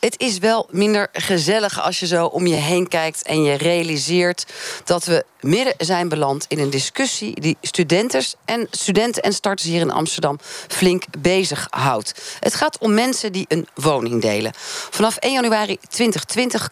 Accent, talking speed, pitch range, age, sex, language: Dutch, 160 wpm, 145-205 Hz, 40-59, female, Dutch